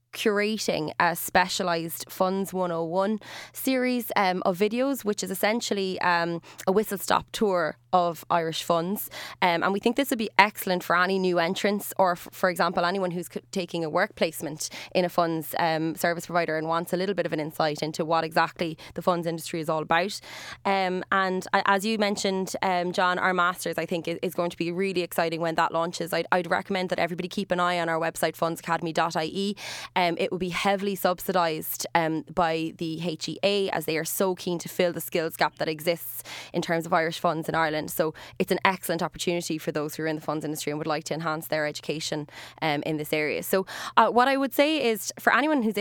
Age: 20-39